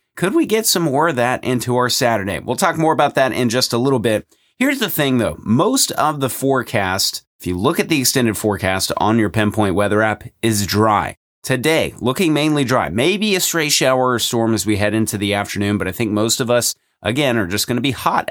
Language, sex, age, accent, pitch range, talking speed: English, male, 30-49, American, 105-135 Hz, 235 wpm